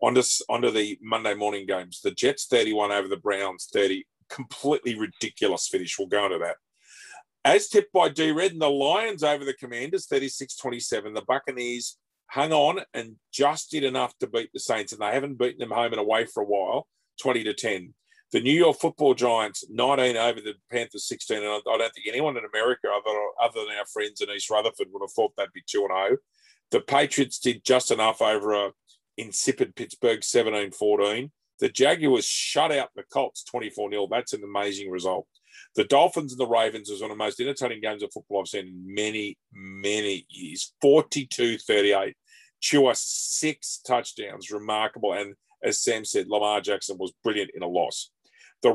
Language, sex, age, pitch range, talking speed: English, male, 40-59, 105-160 Hz, 175 wpm